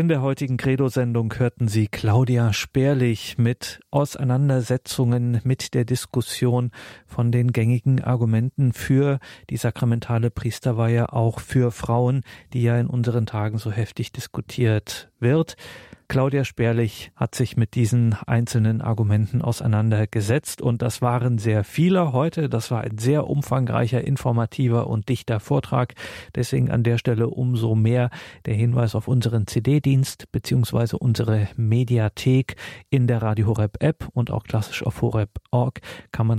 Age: 40-59